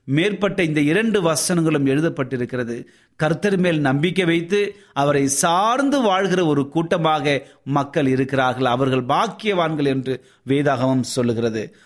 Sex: male